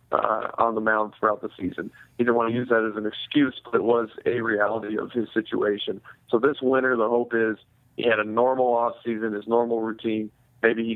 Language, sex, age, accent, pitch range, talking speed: English, male, 40-59, American, 110-120 Hz, 225 wpm